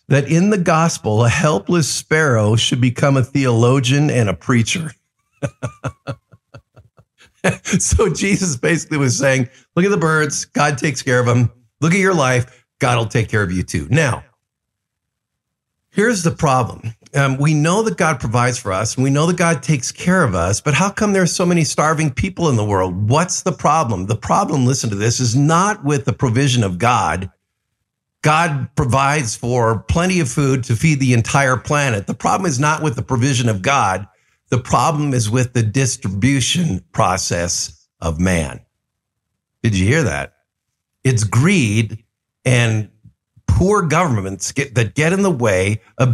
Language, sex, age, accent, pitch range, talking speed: English, male, 50-69, American, 115-155 Hz, 170 wpm